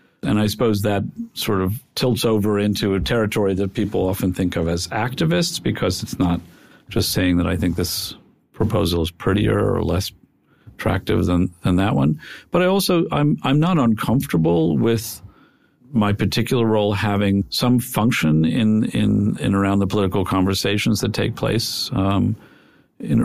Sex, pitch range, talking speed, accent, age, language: male, 90-120 Hz, 165 wpm, American, 50-69, English